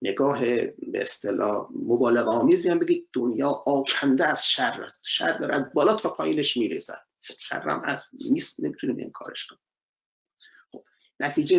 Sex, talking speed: male, 140 wpm